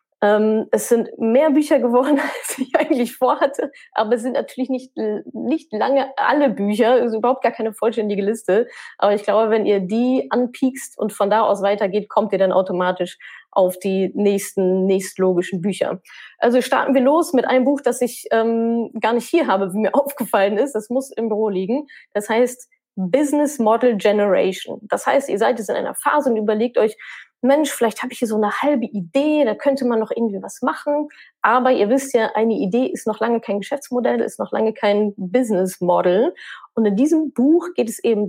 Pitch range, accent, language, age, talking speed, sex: 205-260 Hz, German, German, 20-39, 195 wpm, female